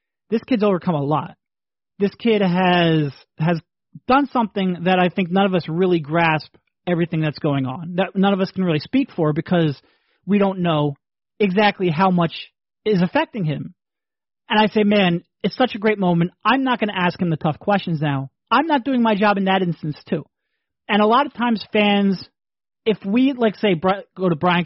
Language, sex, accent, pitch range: English, male, American, 160-220 Hz